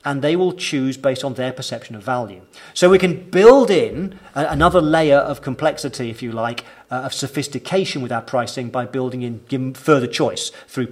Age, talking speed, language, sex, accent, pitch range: 40-59, 185 wpm, English, male, British, 130-165 Hz